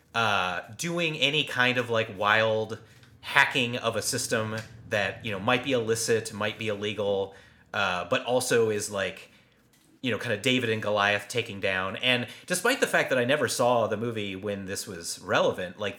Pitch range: 100-135 Hz